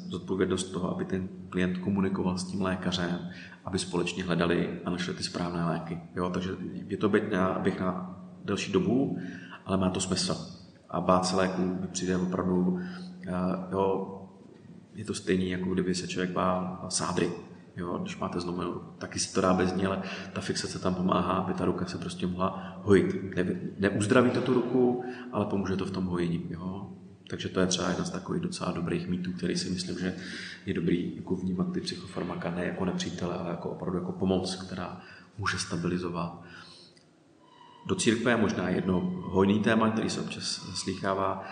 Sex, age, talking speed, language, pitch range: male, 30-49, 175 wpm, Czech, 90-95 Hz